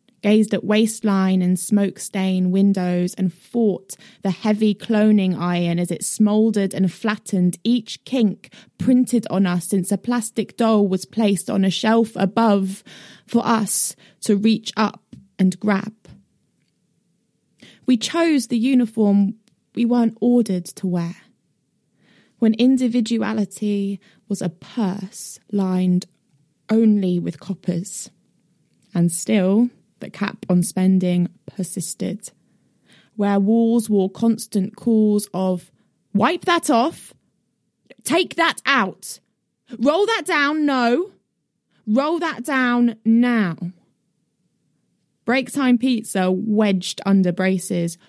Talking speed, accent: 110 wpm, British